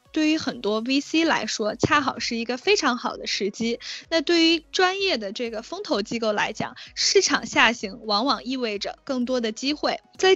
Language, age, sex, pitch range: Chinese, 10-29, female, 225-290 Hz